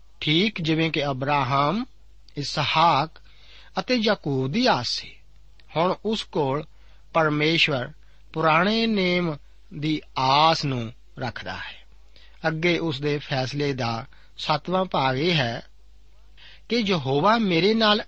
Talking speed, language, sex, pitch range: 85 wpm, Punjabi, male, 135-185 Hz